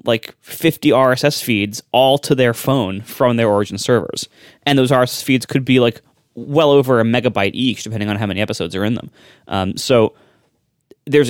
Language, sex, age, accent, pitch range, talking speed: English, male, 20-39, American, 105-140 Hz, 185 wpm